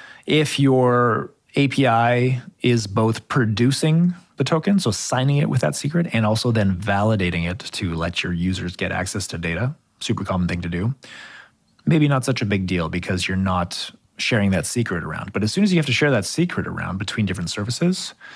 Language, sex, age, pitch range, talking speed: English, male, 30-49, 95-125 Hz, 195 wpm